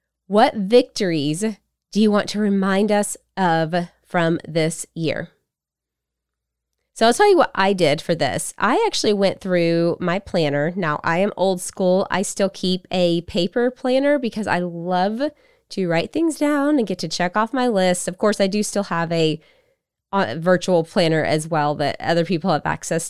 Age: 20-39